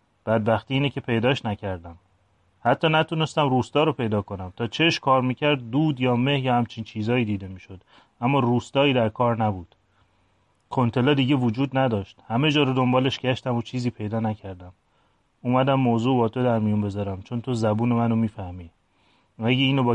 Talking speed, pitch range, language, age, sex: 175 wpm, 105-130 Hz, Persian, 30-49, male